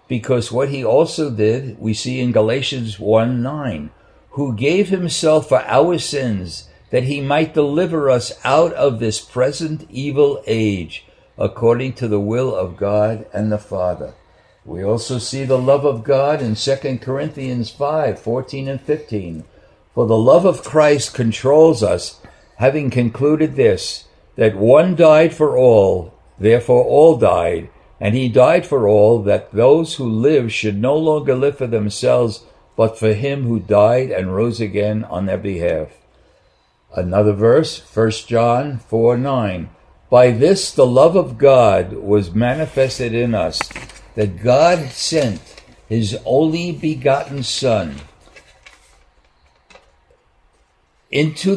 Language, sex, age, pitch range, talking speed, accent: English, male, 60-79, 110-145 Hz, 135 wpm, American